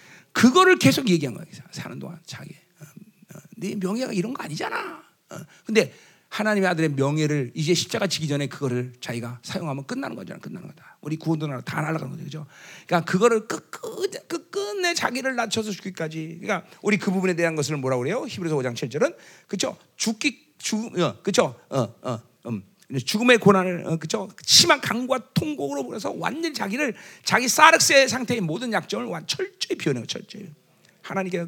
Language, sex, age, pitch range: Korean, male, 40-59, 150-225 Hz